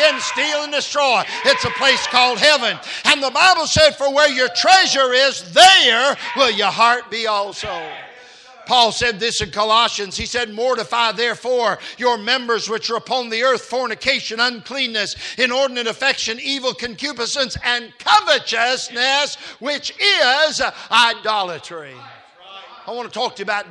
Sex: male